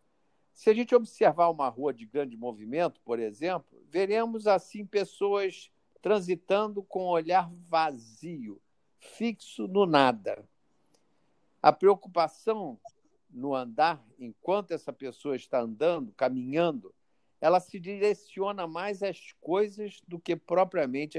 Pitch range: 150-210 Hz